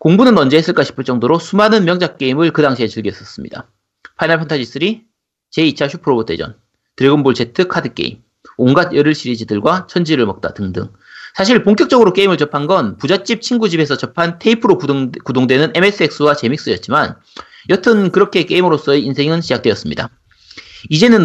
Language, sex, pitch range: Korean, male, 130-180 Hz